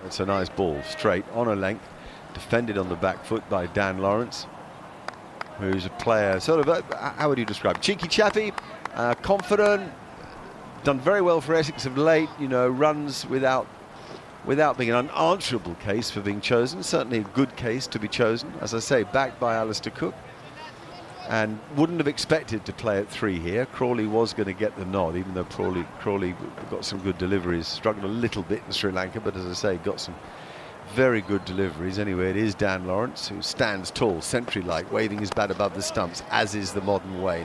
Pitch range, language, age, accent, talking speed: 95-130 Hz, English, 50-69, British, 195 wpm